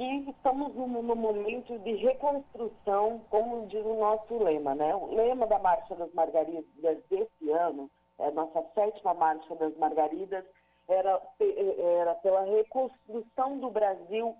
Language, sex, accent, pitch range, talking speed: Portuguese, female, Brazilian, 190-260 Hz, 135 wpm